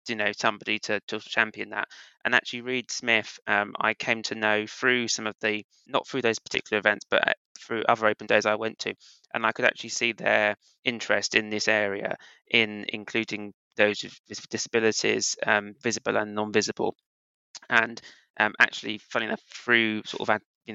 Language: English